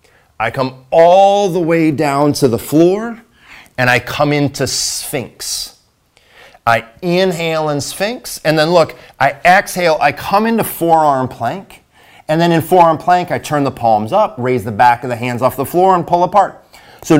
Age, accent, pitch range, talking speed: 30-49, American, 125-165 Hz, 180 wpm